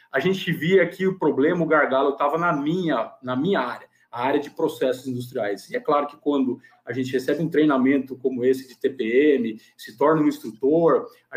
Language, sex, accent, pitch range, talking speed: Portuguese, male, Brazilian, 140-205 Hz, 200 wpm